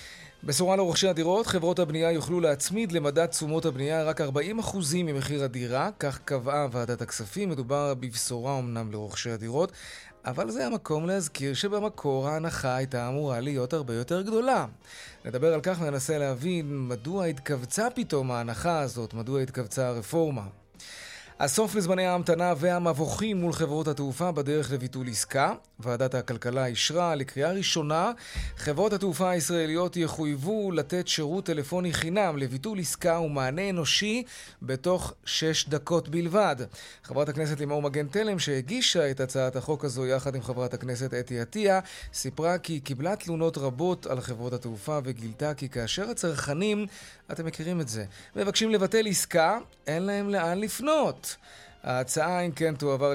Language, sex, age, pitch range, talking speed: Hebrew, male, 20-39, 130-180 Hz, 140 wpm